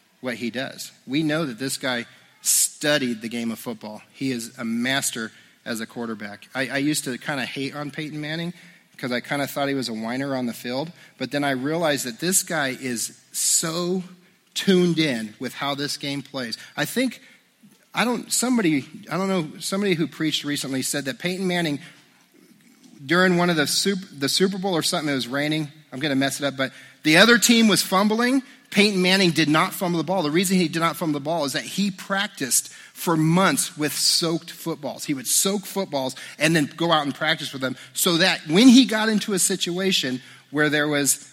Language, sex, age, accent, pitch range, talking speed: English, male, 40-59, American, 130-180 Hz, 210 wpm